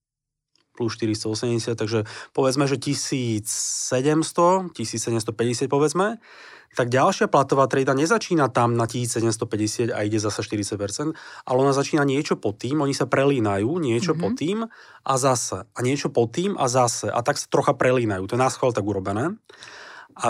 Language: Slovak